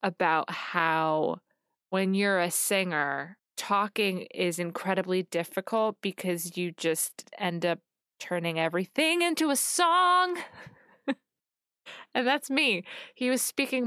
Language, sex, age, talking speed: English, female, 20-39, 110 wpm